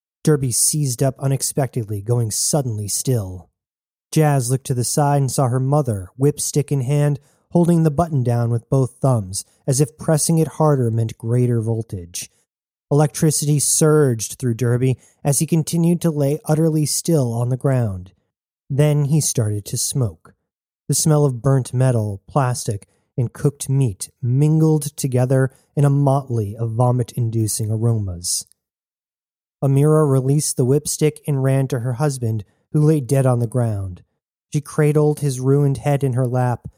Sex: male